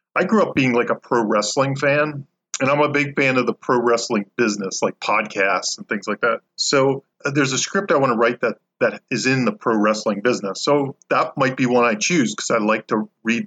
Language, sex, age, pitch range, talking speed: English, male, 40-59, 105-145 Hz, 240 wpm